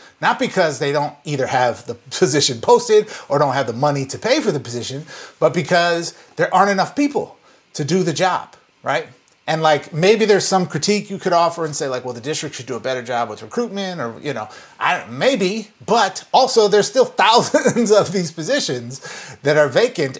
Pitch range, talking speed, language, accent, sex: 130-175 Hz, 200 wpm, English, American, male